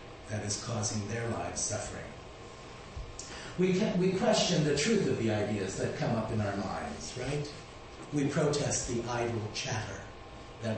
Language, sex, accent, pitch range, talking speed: English, male, American, 115-155 Hz, 155 wpm